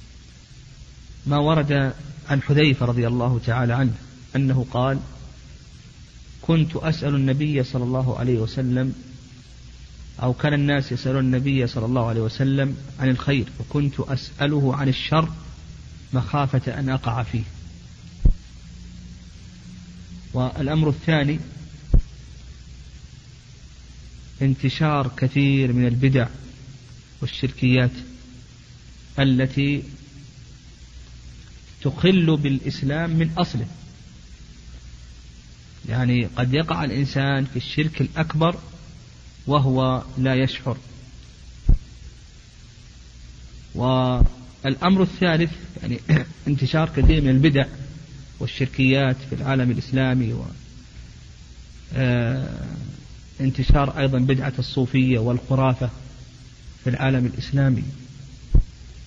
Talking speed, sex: 80 wpm, male